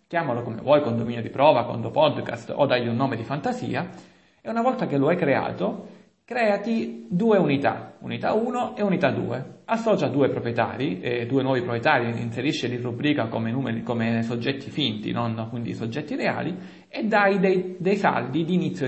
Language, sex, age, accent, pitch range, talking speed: Italian, male, 40-59, native, 120-190 Hz, 175 wpm